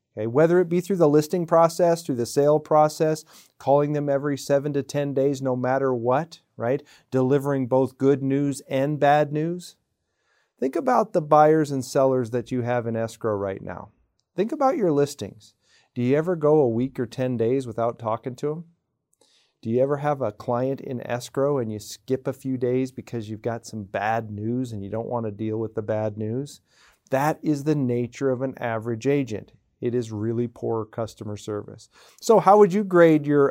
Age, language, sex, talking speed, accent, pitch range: 40-59, English, male, 195 wpm, American, 120-150 Hz